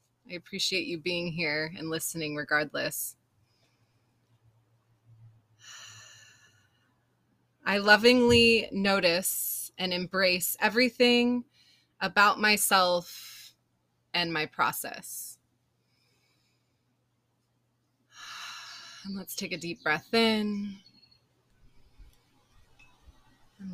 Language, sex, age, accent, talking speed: English, female, 20-39, American, 70 wpm